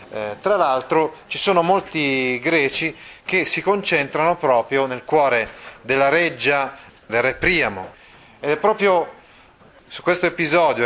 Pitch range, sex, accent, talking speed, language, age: 135-170 Hz, male, native, 135 wpm, Italian, 30-49